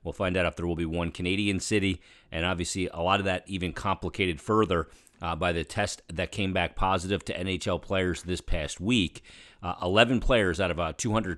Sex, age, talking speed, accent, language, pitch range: male, 40-59, 210 wpm, American, English, 85-100 Hz